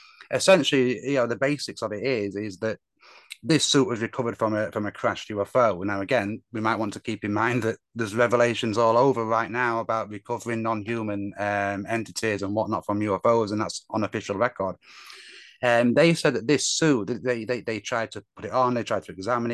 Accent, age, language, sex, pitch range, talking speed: British, 30-49, English, male, 105-125 Hz, 205 wpm